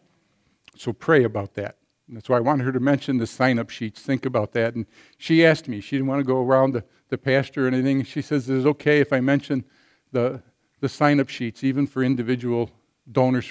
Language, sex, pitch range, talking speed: English, male, 120-145 Hz, 220 wpm